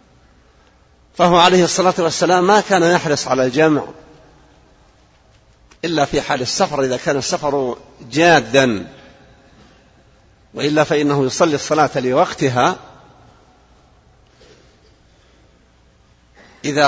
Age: 50-69